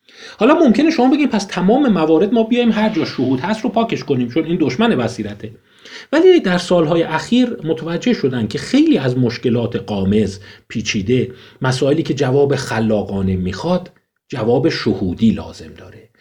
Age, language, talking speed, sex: 40-59, Persian, 150 wpm, male